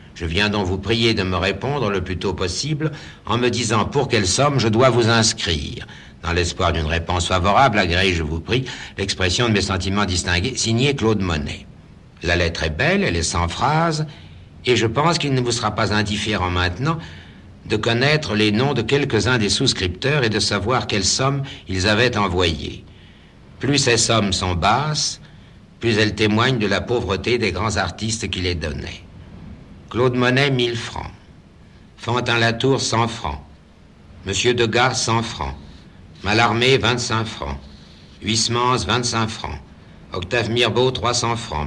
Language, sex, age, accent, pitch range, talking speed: French, male, 60-79, French, 90-120 Hz, 160 wpm